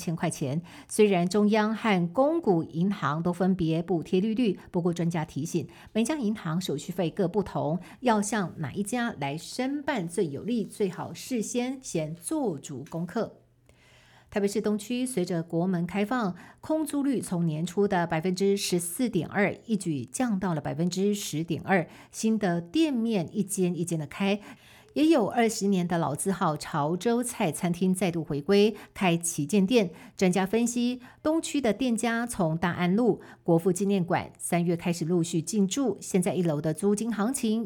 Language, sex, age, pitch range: Chinese, female, 50-69, 170-220 Hz